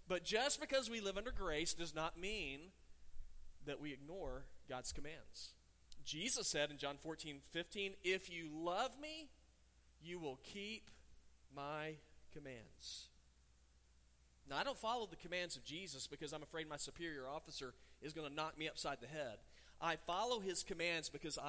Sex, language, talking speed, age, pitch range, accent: male, English, 160 wpm, 40-59, 115-165 Hz, American